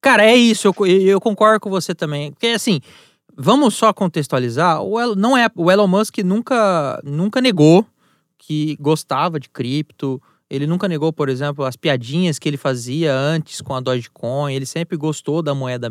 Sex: male